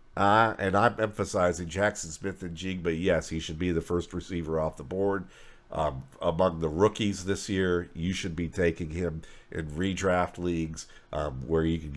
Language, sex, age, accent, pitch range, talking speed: English, male, 50-69, American, 85-105 Hz, 185 wpm